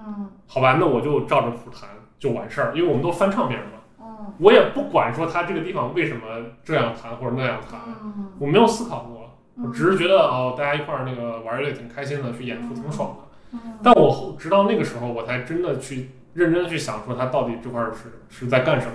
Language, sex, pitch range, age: Chinese, male, 125-190 Hz, 20-39